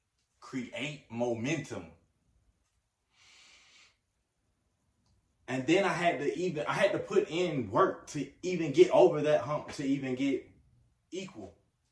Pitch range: 95-155 Hz